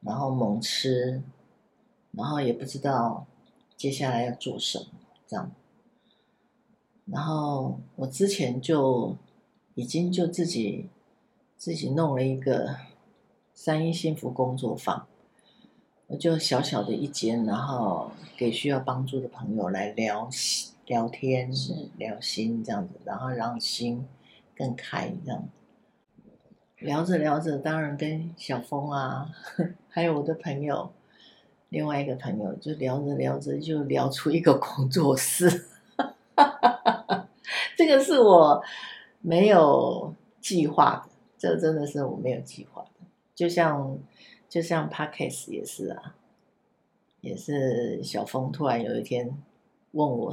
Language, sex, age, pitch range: Chinese, female, 50-69, 130-185 Hz